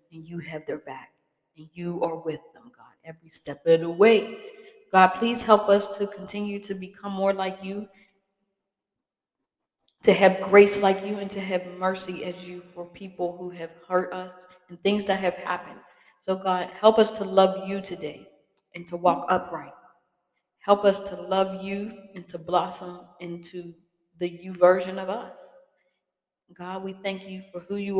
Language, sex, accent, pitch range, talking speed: English, female, American, 175-205 Hz, 175 wpm